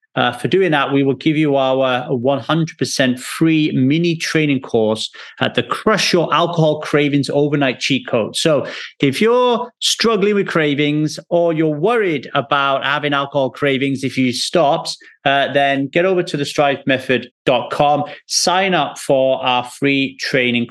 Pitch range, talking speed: 120-160 Hz, 150 wpm